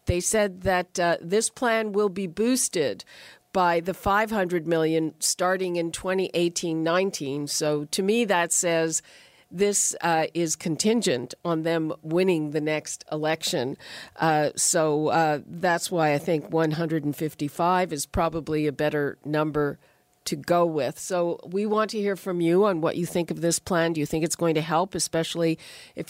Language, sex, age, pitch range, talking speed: English, female, 50-69, 160-195 Hz, 160 wpm